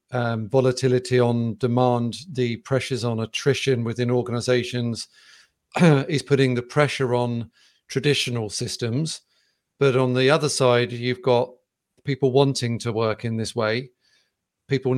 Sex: male